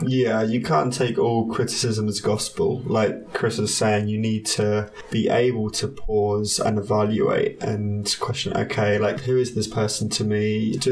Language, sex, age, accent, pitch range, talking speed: English, male, 20-39, British, 105-115 Hz, 175 wpm